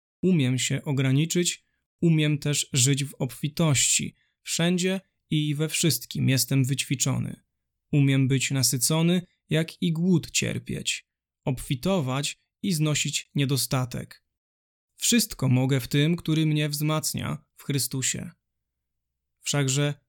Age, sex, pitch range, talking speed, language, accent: 20-39, male, 130-160 Hz, 105 wpm, Polish, native